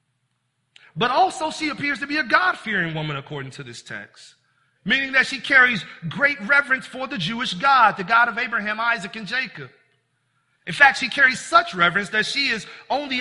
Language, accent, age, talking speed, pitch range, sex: English, American, 40-59, 180 wpm, 175-250 Hz, male